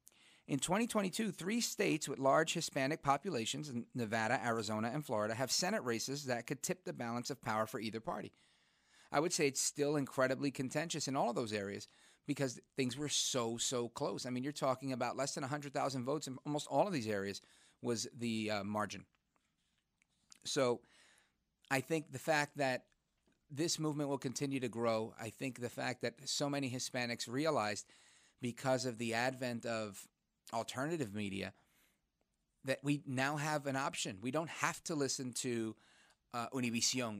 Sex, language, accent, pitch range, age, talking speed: male, English, American, 115-145 Hz, 40-59, 170 wpm